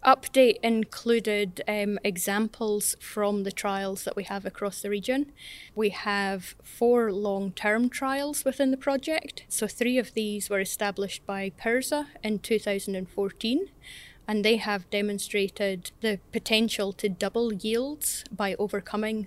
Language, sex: English, female